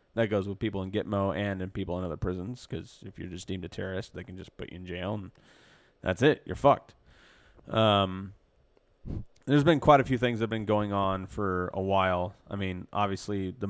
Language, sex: English, male